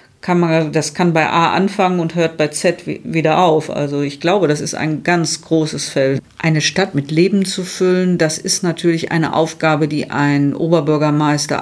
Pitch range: 155-190 Hz